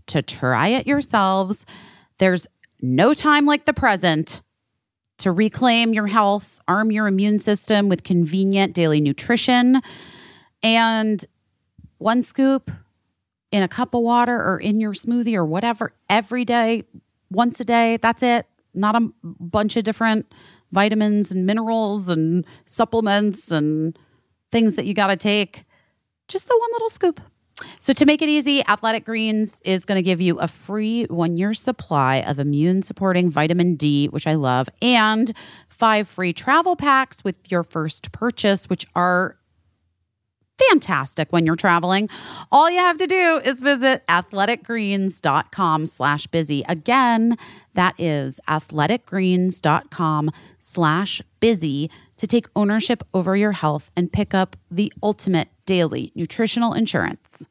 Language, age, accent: English, 30-49, American